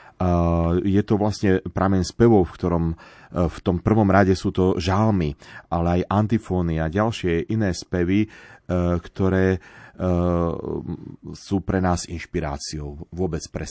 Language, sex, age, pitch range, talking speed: Slovak, male, 30-49, 85-100 Hz, 115 wpm